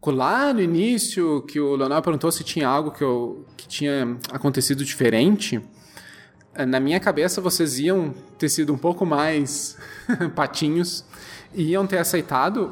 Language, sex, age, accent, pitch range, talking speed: Portuguese, male, 20-39, Brazilian, 130-165 Hz, 145 wpm